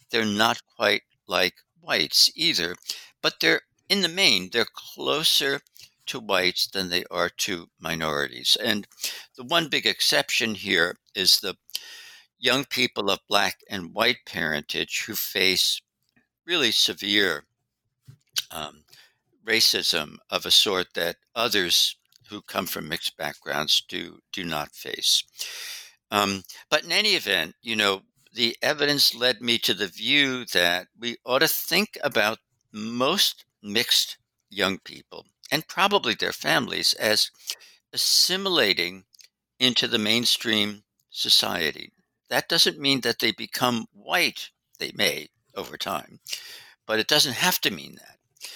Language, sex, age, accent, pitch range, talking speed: English, male, 60-79, American, 105-140 Hz, 130 wpm